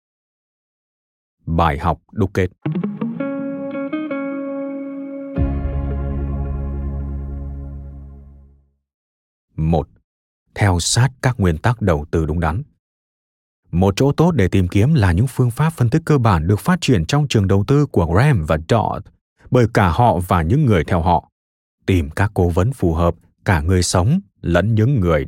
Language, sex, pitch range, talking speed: Vietnamese, male, 85-135 Hz, 140 wpm